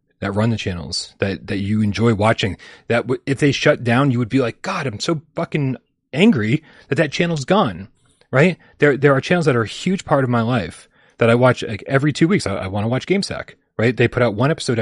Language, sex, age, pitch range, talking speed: English, male, 30-49, 105-140 Hz, 240 wpm